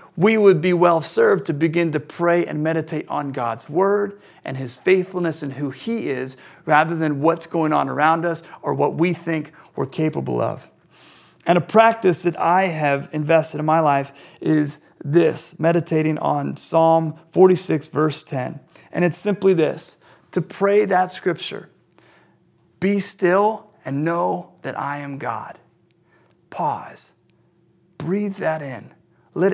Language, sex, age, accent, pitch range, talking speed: English, male, 40-59, American, 145-180 Hz, 150 wpm